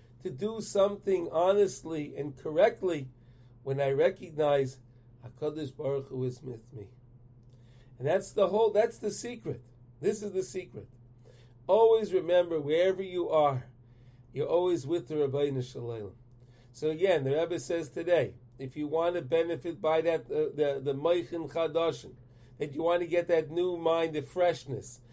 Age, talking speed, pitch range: 40-59, 155 wpm, 125-185 Hz